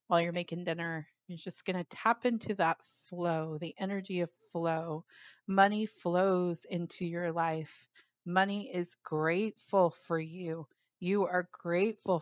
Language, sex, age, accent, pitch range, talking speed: English, female, 30-49, American, 170-195 Hz, 140 wpm